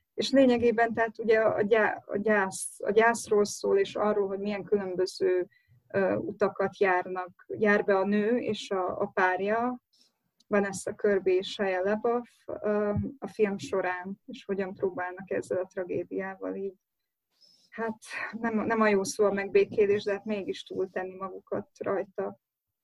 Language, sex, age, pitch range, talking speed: Hungarian, female, 20-39, 195-230 Hz, 145 wpm